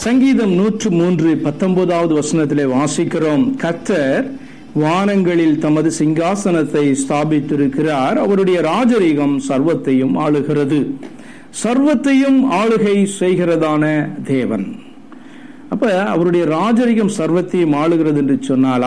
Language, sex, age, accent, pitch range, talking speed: Tamil, male, 50-69, native, 150-235 Hz, 85 wpm